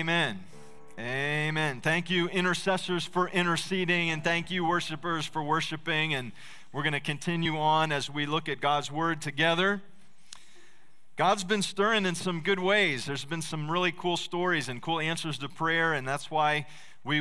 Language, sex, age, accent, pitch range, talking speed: English, male, 40-59, American, 140-180 Hz, 165 wpm